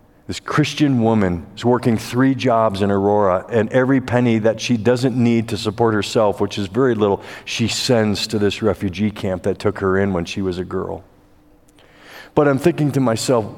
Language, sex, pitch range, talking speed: English, male, 110-135 Hz, 190 wpm